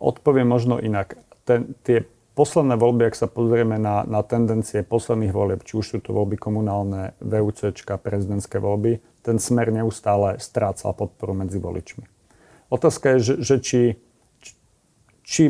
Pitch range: 105-120 Hz